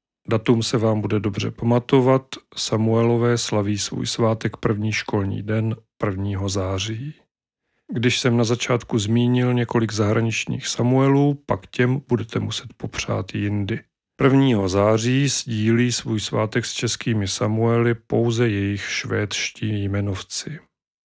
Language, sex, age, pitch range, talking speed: Czech, male, 40-59, 105-125 Hz, 115 wpm